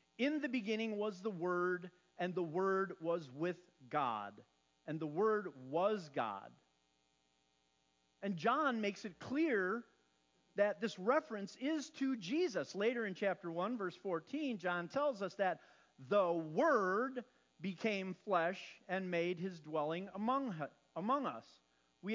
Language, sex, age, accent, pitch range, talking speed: English, male, 40-59, American, 160-235 Hz, 135 wpm